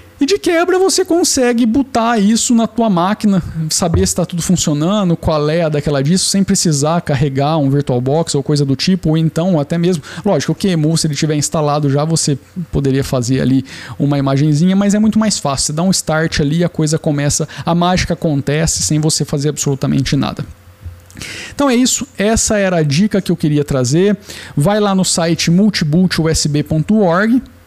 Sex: male